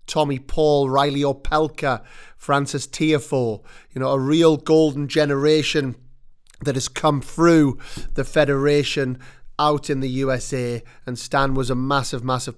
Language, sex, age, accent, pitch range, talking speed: English, male, 30-49, British, 130-150 Hz, 135 wpm